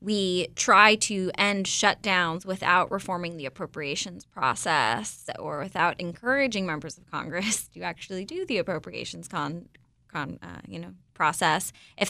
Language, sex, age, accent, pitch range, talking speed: English, female, 20-39, American, 165-190 Hz, 140 wpm